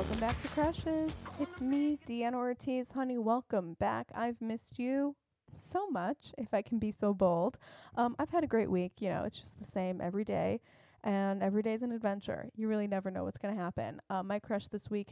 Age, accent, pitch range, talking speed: 20-39, American, 195-240 Hz, 215 wpm